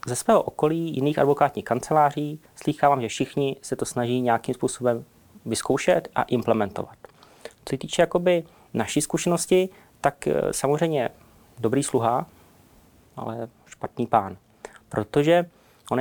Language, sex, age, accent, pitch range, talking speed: Czech, male, 30-49, native, 110-135 Hz, 120 wpm